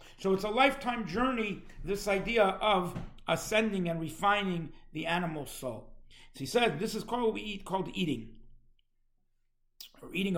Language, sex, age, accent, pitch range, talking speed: English, male, 50-69, American, 135-185 Hz, 155 wpm